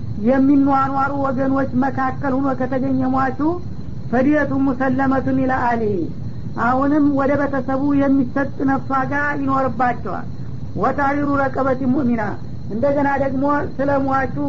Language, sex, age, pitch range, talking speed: Amharic, female, 50-69, 255-275 Hz, 70 wpm